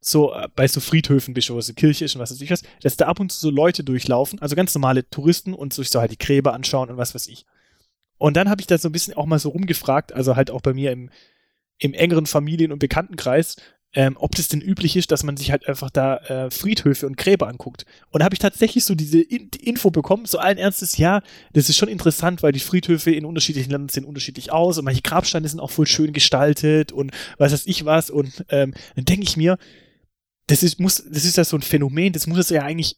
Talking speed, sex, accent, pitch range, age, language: 250 wpm, male, German, 135-175 Hz, 20-39, German